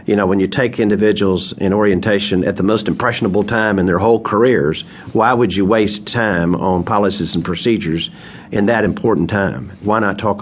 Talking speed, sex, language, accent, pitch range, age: 190 wpm, male, English, American, 90-105 Hz, 50-69